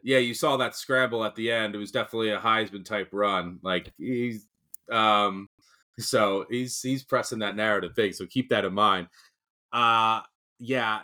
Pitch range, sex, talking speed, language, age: 100-125 Hz, male, 175 wpm, English, 30-49